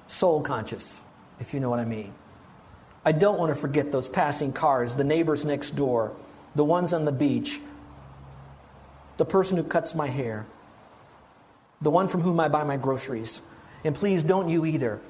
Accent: American